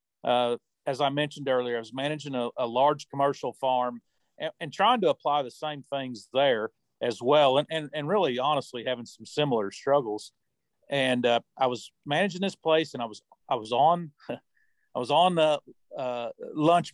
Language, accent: English, American